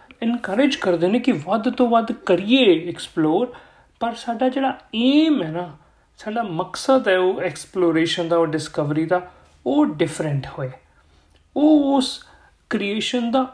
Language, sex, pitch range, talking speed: Punjabi, male, 165-210 Hz, 135 wpm